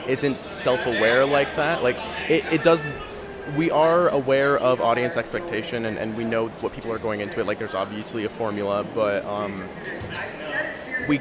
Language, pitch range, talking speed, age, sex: English, 115-140 Hz, 170 wpm, 20-39, male